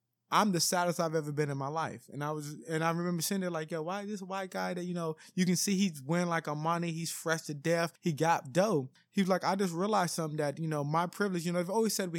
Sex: male